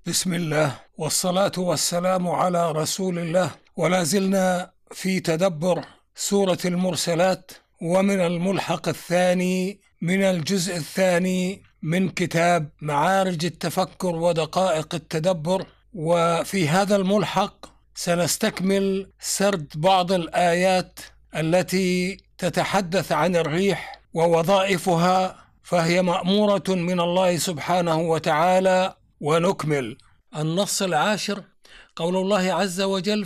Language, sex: Arabic, male